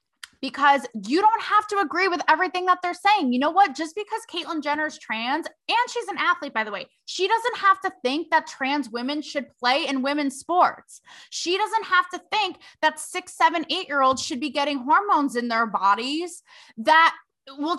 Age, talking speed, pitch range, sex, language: 20-39, 190 wpm, 240-340 Hz, female, English